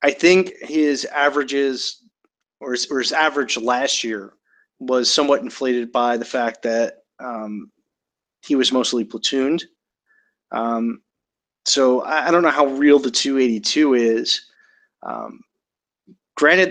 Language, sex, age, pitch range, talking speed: English, male, 20-39, 115-145 Hz, 125 wpm